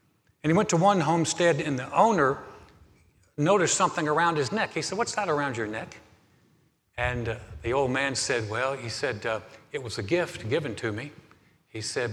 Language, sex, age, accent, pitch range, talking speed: English, male, 60-79, American, 120-165 Hz, 200 wpm